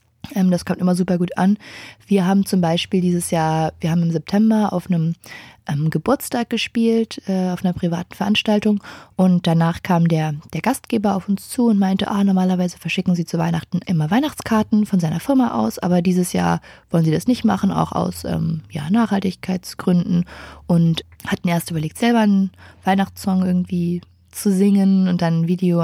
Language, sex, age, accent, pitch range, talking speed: German, female, 20-39, German, 165-195 Hz, 175 wpm